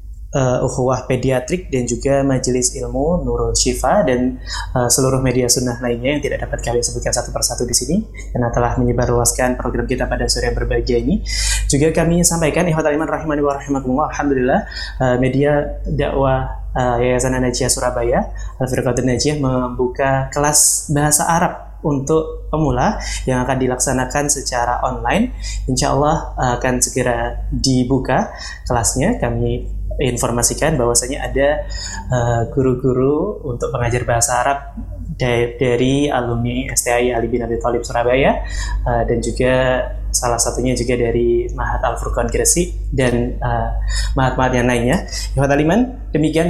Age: 20-39